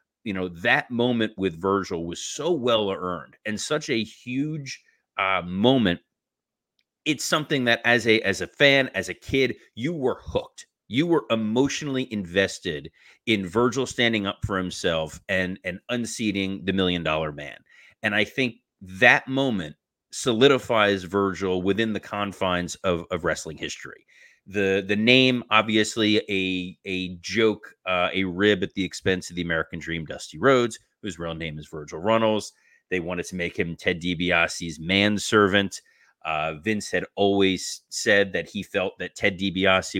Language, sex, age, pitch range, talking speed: English, male, 30-49, 90-115 Hz, 160 wpm